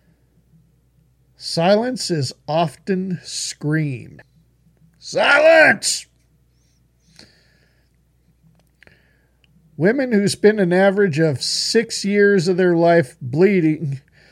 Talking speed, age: 70 wpm, 50-69